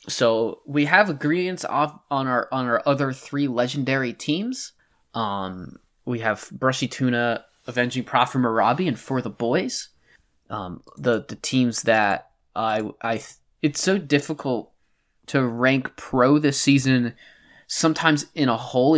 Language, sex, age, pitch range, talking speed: English, male, 10-29, 110-135 Hz, 140 wpm